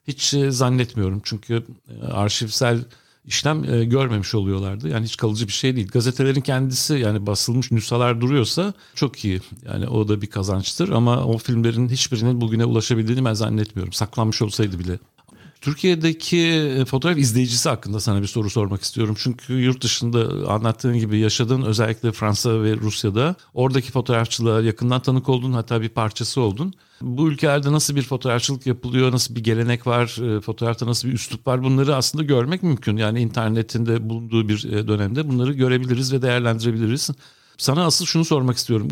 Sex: male